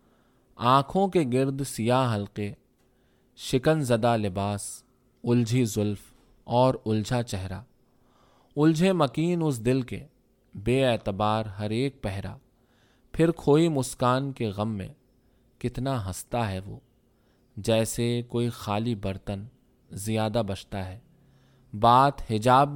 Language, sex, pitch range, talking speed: Urdu, male, 110-135 Hz, 110 wpm